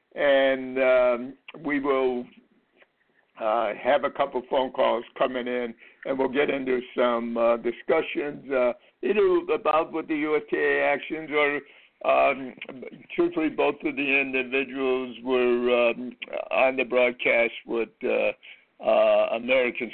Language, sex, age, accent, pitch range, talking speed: English, male, 60-79, American, 120-150 Hz, 130 wpm